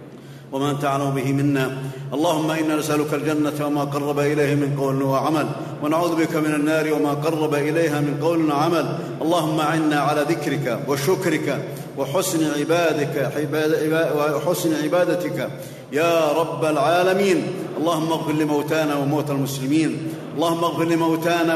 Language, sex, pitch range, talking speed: Arabic, male, 145-165 Hz, 120 wpm